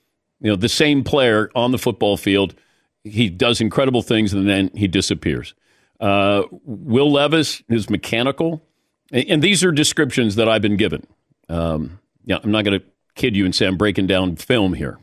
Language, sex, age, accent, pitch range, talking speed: English, male, 50-69, American, 100-140 Hz, 180 wpm